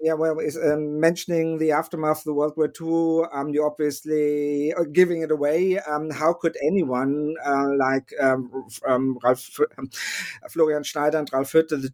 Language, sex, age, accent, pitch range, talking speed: English, male, 50-69, German, 140-165 Hz, 160 wpm